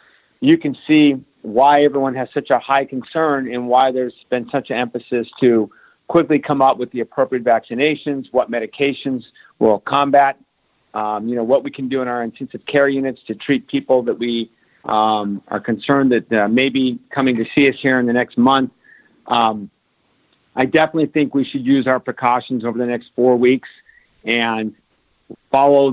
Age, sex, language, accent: 50-69, male, English, American